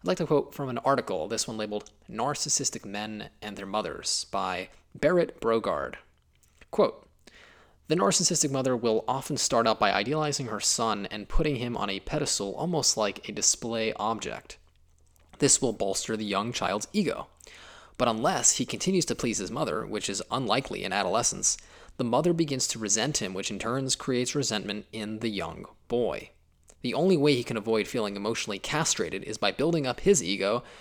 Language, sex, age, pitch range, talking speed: English, male, 20-39, 105-140 Hz, 175 wpm